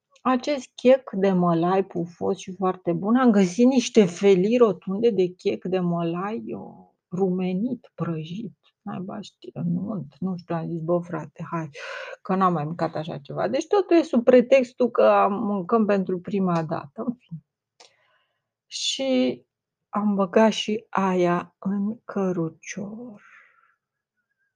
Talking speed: 130 wpm